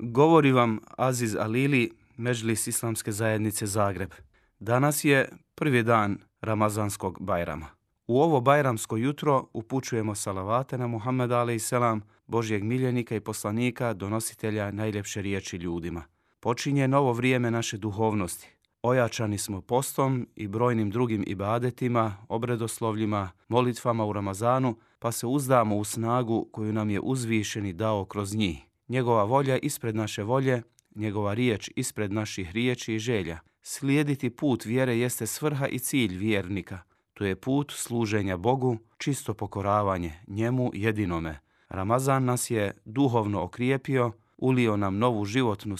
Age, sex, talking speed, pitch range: 30-49, male, 125 wpm, 105-125 Hz